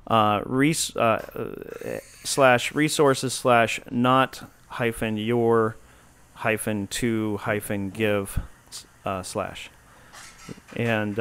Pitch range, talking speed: 105-130 Hz, 95 wpm